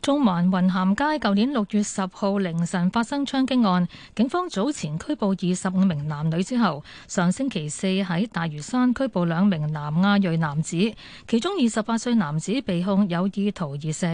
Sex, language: female, Chinese